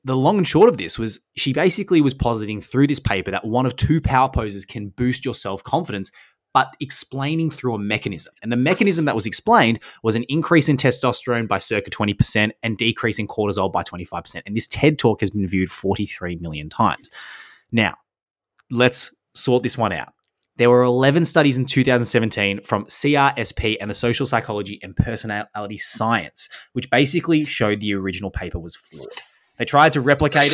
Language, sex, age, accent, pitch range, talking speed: English, male, 20-39, Australian, 105-130 Hz, 180 wpm